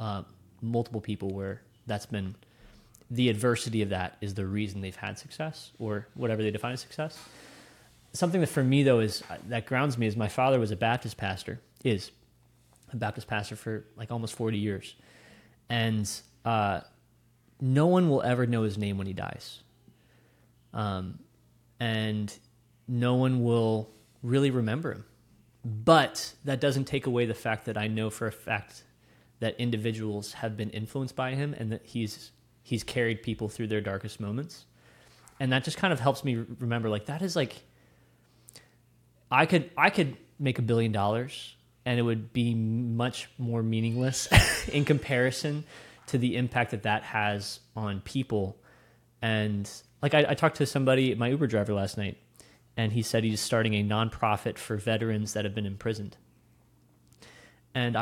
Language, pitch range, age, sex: English, 105-125 Hz, 20-39, male